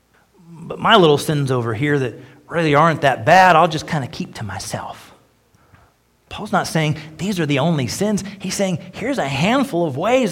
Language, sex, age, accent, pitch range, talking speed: English, male, 40-59, American, 135-190 Hz, 190 wpm